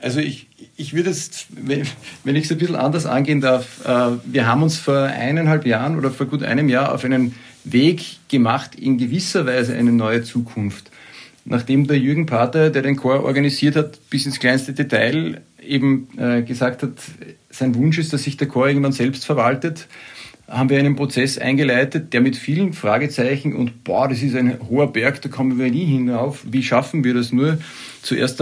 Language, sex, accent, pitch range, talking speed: German, male, Austrian, 125-145 Hz, 185 wpm